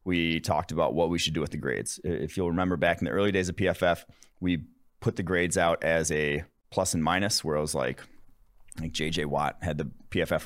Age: 30-49